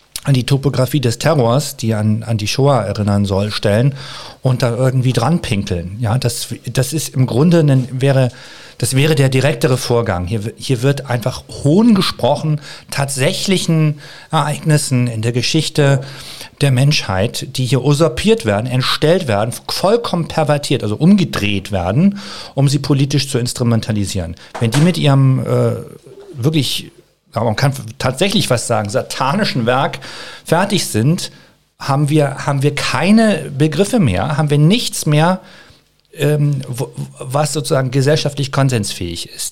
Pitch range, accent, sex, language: 125-160 Hz, German, male, German